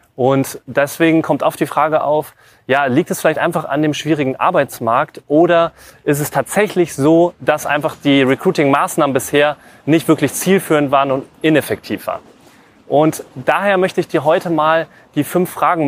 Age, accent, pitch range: 30-49, German, 135-165 Hz